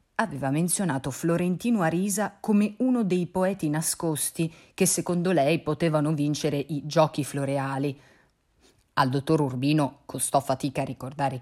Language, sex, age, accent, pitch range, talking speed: Italian, female, 30-49, native, 135-175 Hz, 125 wpm